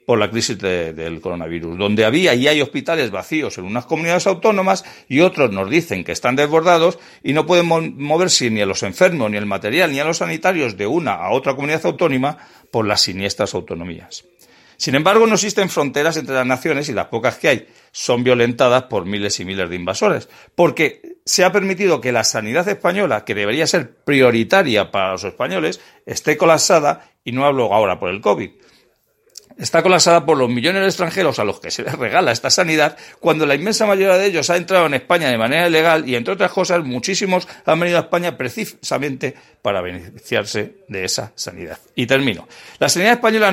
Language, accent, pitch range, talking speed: Spanish, Spanish, 120-180 Hz, 195 wpm